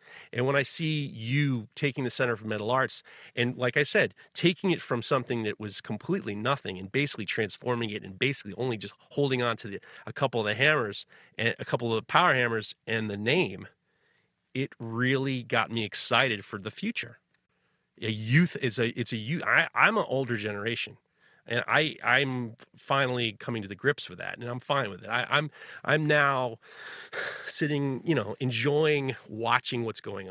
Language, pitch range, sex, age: English, 110-140 Hz, male, 30-49